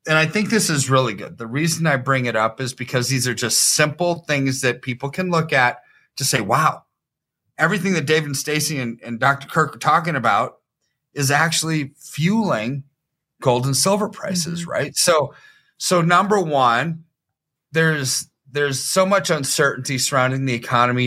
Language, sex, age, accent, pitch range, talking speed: English, male, 30-49, American, 130-165 Hz, 170 wpm